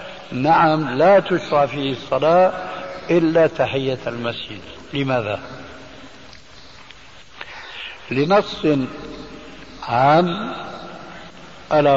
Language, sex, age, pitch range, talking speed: Arabic, male, 60-79, 135-175 Hz, 60 wpm